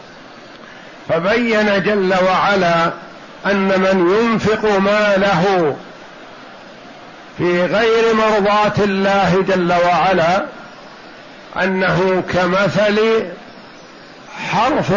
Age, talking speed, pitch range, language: 60-79, 65 wpm, 190-220 Hz, Arabic